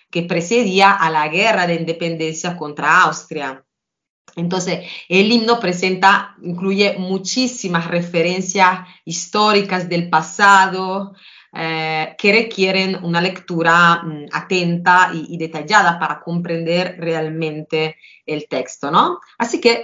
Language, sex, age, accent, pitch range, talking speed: Spanish, female, 30-49, Italian, 160-195 Hz, 110 wpm